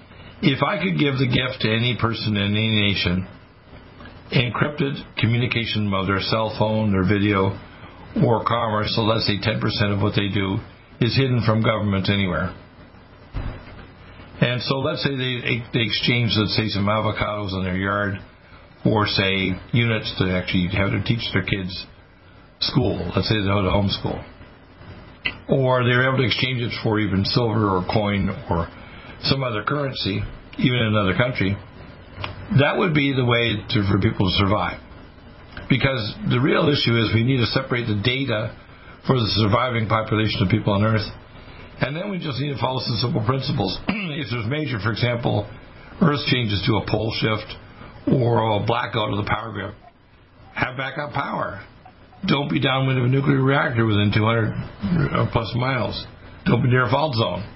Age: 60-79